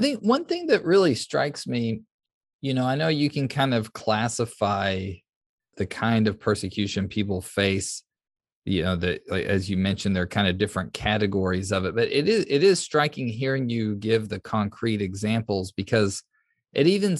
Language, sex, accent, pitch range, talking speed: English, male, American, 95-120 Hz, 180 wpm